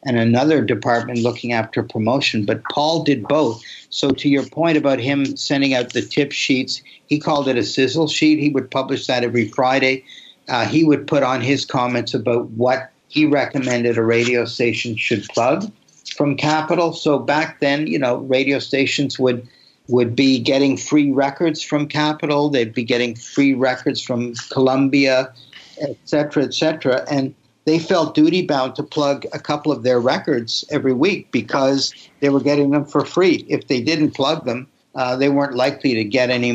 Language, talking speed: English, 180 wpm